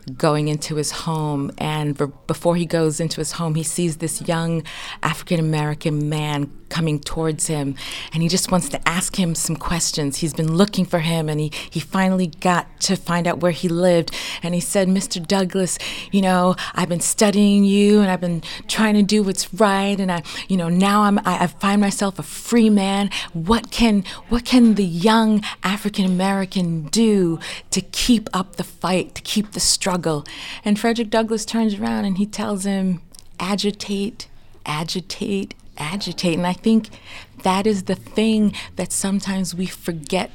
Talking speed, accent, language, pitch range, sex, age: 175 wpm, American, English, 165-205 Hz, female, 30-49